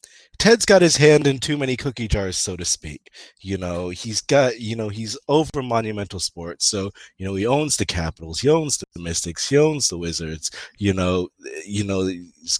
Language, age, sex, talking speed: English, 30-49, male, 200 wpm